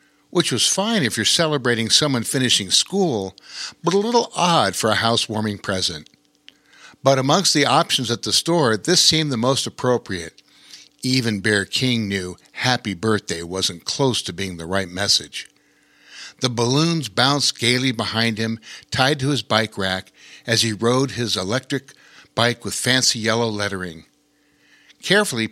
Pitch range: 105-140 Hz